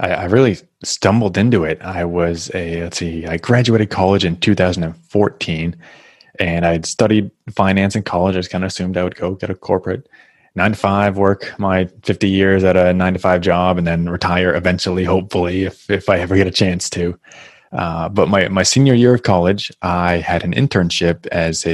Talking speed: 200 wpm